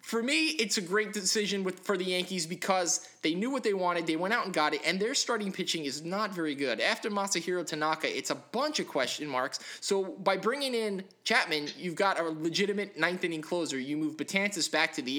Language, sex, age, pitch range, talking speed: English, male, 20-39, 145-190 Hz, 225 wpm